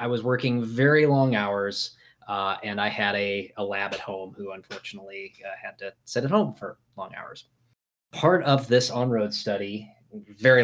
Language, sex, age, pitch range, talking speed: English, male, 20-39, 105-125 Hz, 180 wpm